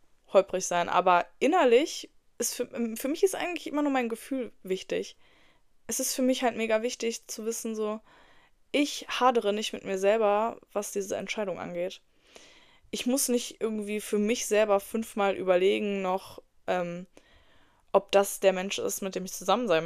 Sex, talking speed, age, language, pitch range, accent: female, 170 wpm, 10-29, German, 185-230 Hz, German